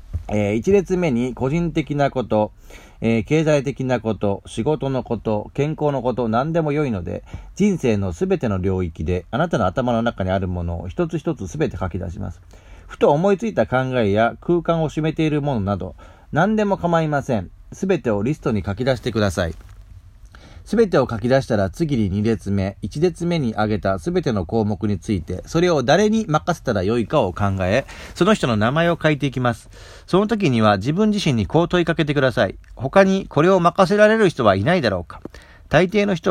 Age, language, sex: 40-59, Japanese, male